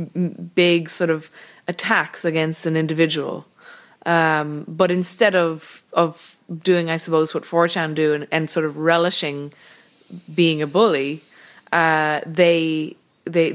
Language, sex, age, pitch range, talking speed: English, female, 20-39, 150-170 Hz, 130 wpm